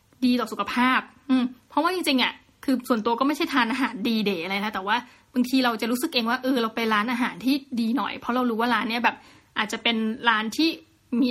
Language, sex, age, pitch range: Thai, female, 20-39, 225-265 Hz